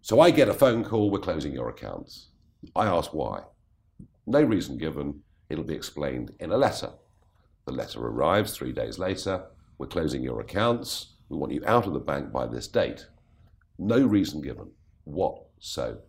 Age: 50-69